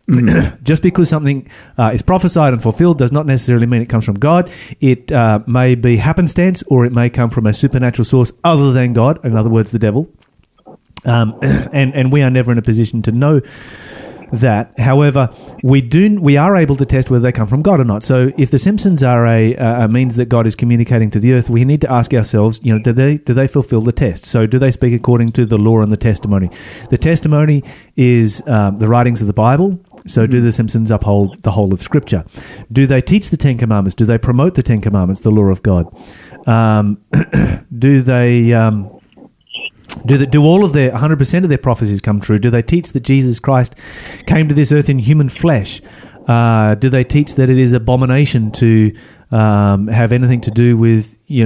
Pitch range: 115-140 Hz